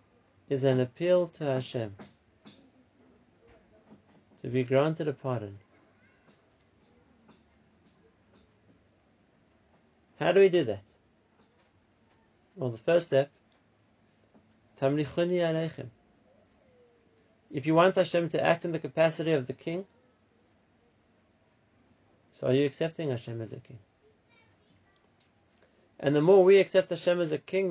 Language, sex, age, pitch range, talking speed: English, male, 30-49, 110-150 Hz, 105 wpm